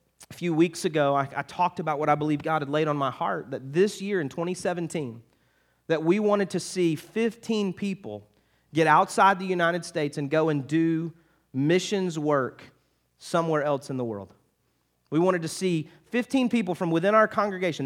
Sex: male